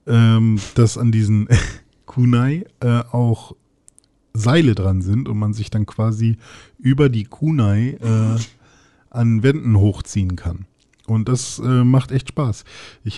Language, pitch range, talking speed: German, 110-130 Hz, 135 wpm